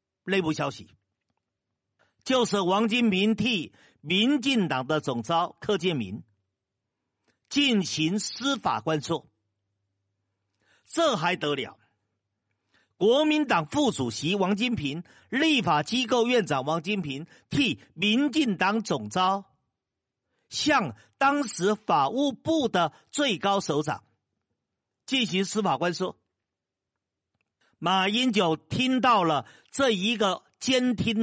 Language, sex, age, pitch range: Chinese, male, 50-69, 135-220 Hz